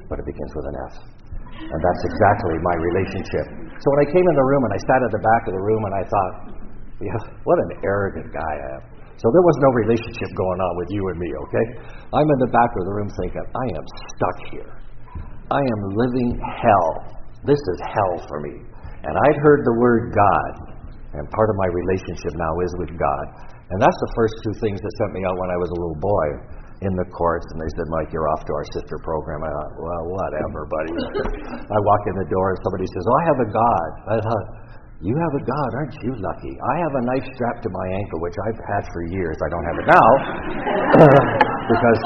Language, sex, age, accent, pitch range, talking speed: English, male, 60-79, American, 85-120 Hz, 225 wpm